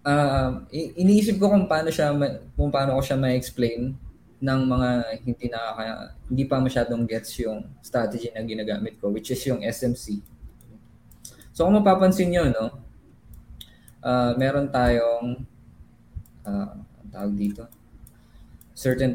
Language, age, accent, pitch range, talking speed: English, 20-39, Filipino, 110-135 Hz, 125 wpm